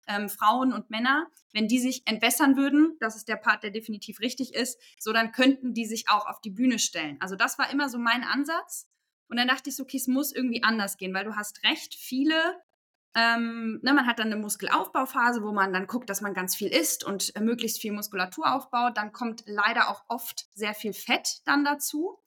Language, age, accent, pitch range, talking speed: German, 20-39, German, 220-275 Hz, 215 wpm